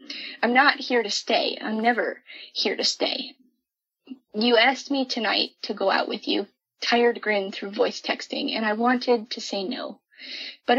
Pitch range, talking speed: 220-270 Hz, 170 wpm